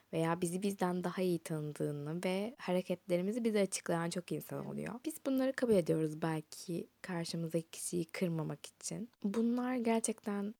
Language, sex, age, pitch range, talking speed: Turkish, female, 20-39, 165-215 Hz, 135 wpm